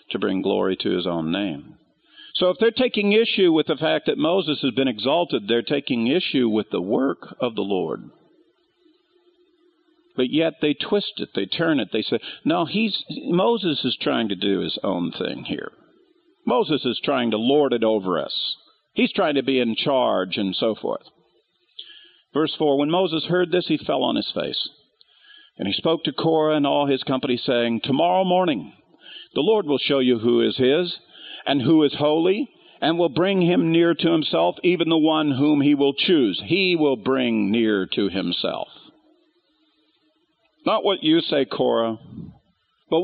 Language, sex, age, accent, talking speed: English, male, 50-69, American, 180 wpm